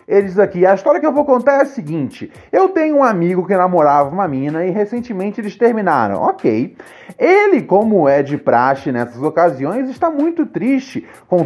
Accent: Brazilian